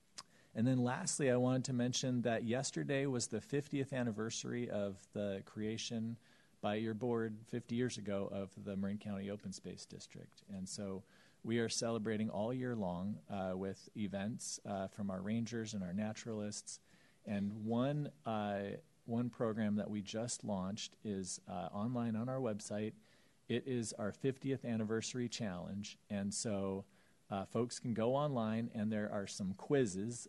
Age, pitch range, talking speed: 40-59, 100-120 Hz, 160 wpm